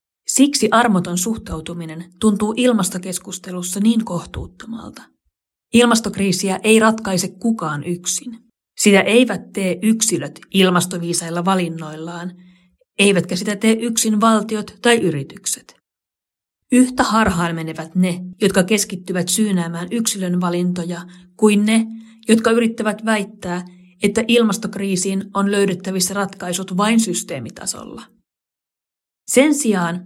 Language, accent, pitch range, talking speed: Finnish, native, 180-220 Hz, 95 wpm